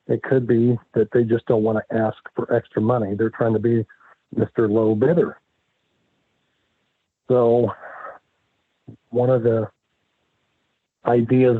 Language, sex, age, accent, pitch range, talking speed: English, male, 50-69, American, 105-120 Hz, 130 wpm